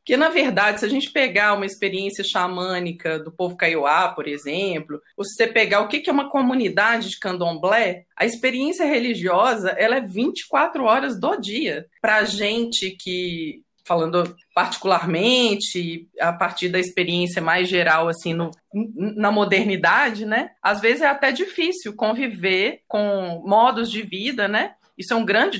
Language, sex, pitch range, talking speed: Portuguese, female, 185-260 Hz, 155 wpm